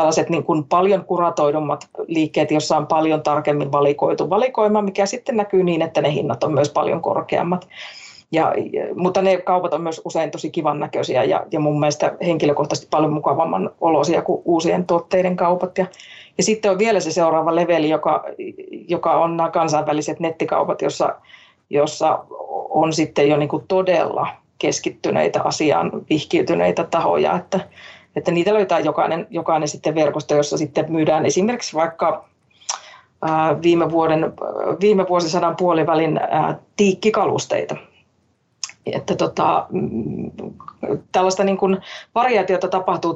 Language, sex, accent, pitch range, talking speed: Finnish, female, native, 155-195 Hz, 130 wpm